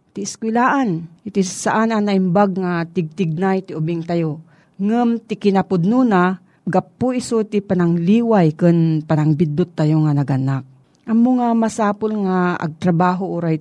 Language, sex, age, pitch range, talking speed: Filipino, female, 40-59, 160-205 Hz, 125 wpm